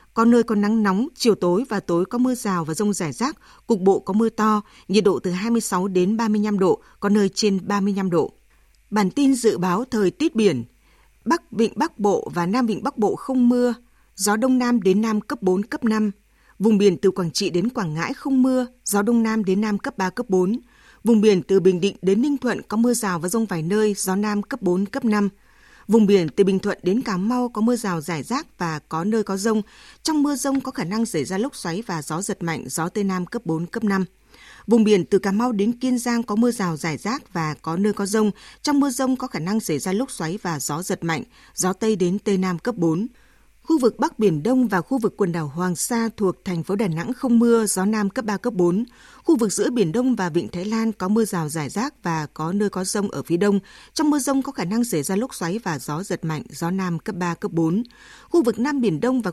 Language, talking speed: Vietnamese, 255 wpm